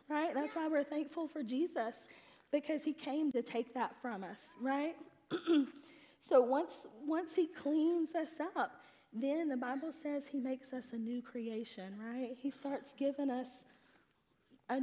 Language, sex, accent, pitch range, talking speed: English, female, American, 260-315 Hz, 160 wpm